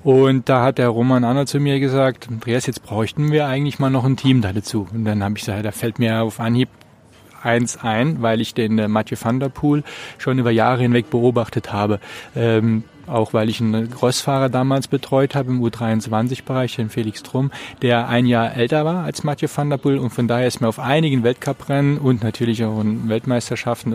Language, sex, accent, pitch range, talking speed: German, male, German, 115-135 Hz, 205 wpm